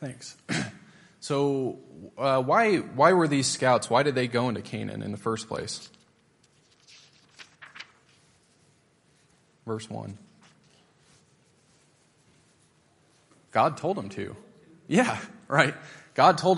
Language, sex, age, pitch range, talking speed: English, male, 20-39, 110-130 Hz, 100 wpm